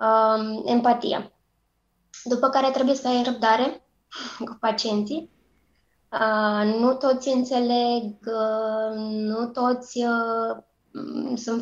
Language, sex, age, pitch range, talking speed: Romanian, female, 20-39, 220-250 Hz, 75 wpm